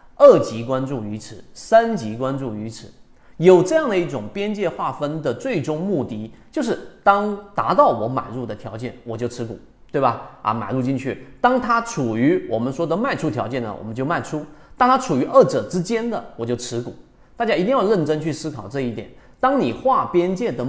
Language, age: Chinese, 30-49